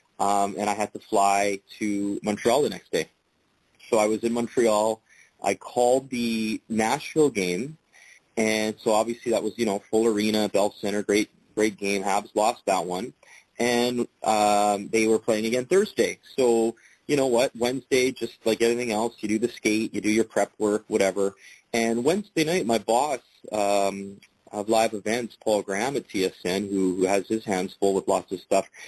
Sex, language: male, English